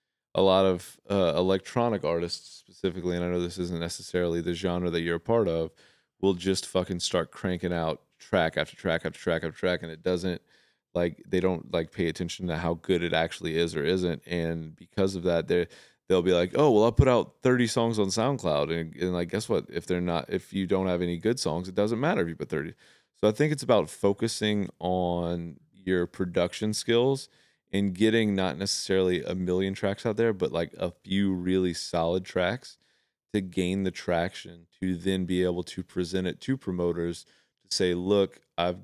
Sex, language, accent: male, English, American